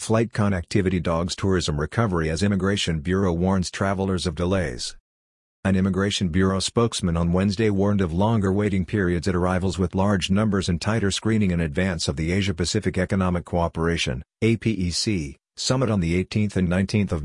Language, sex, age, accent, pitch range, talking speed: English, male, 50-69, American, 90-105 Hz, 160 wpm